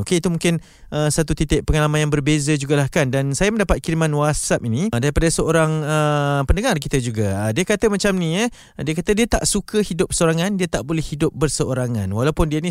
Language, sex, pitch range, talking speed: Malay, male, 120-165 Hz, 210 wpm